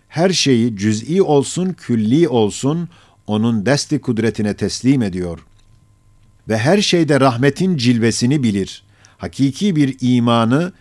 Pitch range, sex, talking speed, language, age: 105-145 Hz, male, 110 wpm, Turkish, 50-69